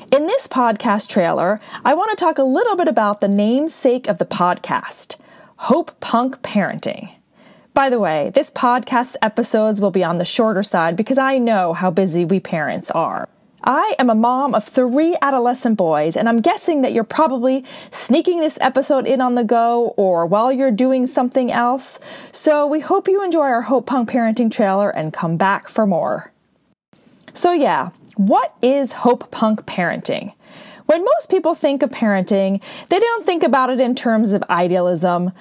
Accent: American